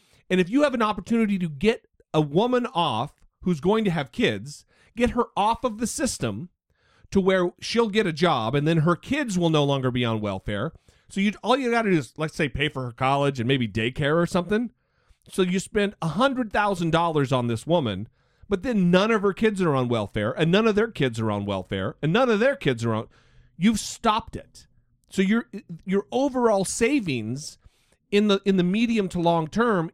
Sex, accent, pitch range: male, American, 130-205 Hz